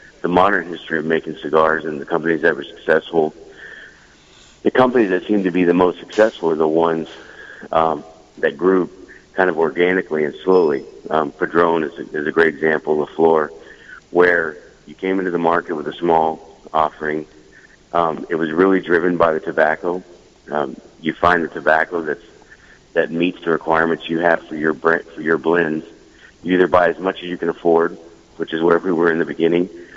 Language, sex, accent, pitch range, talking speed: English, male, American, 80-95 Hz, 190 wpm